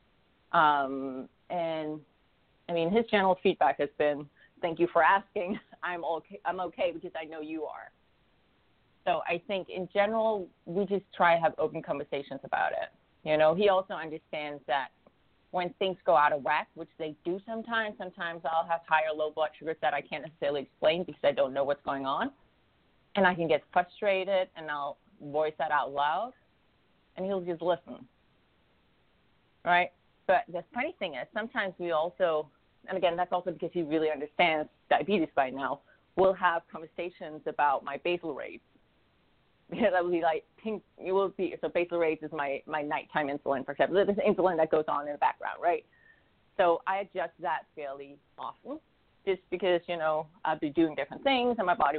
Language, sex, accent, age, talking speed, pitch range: English, female, American, 30-49, 185 wpm, 155-195 Hz